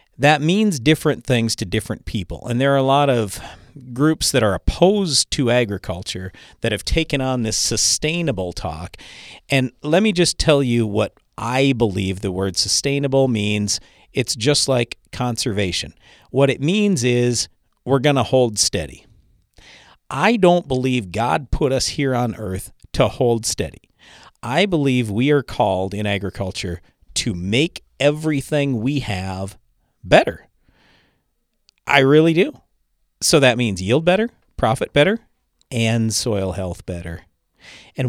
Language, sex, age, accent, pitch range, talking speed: English, male, 40-59, American, 105-145 Hz, 145 wpm